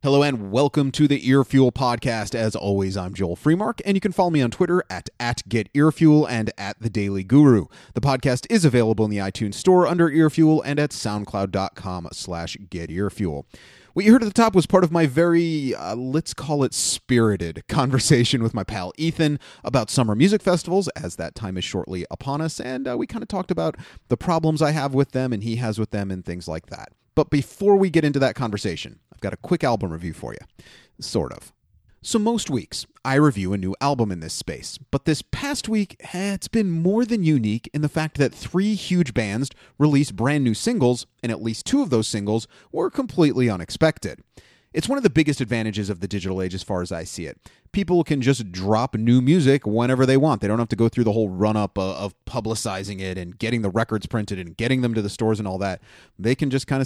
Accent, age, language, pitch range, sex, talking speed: American, 30-49, English, 105-155 Hz, male, 220 wpm